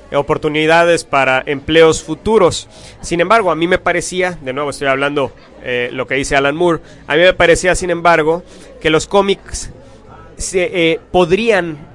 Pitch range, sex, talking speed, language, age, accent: 145-185 Hz, male, 155 wpm, English, 30-49, Mexican